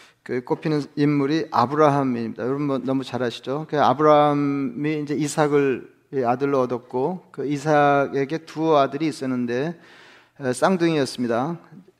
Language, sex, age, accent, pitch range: Korean, male, 40-59, native, 135-160 Hz